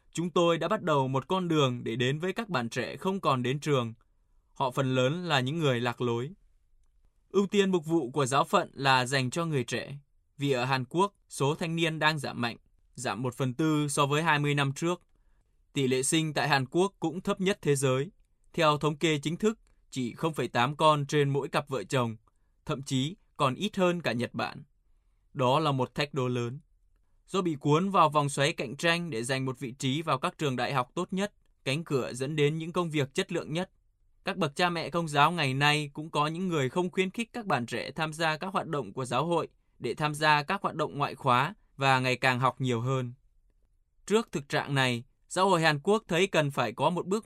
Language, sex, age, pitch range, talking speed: Vietnamese, male, 20-39, 130-170 Hz, 225 wpm